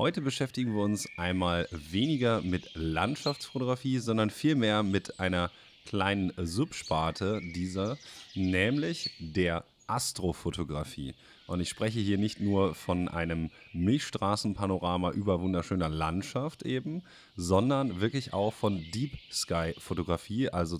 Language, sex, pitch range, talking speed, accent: German, male, 90-115 Hz, 105 wpm, German